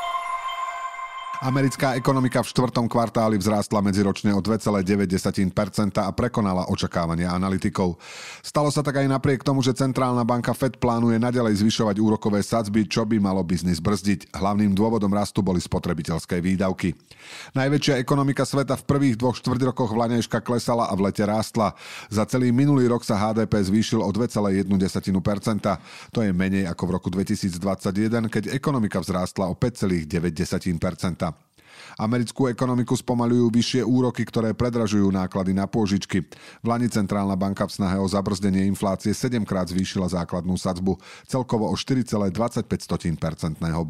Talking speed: 140 wpm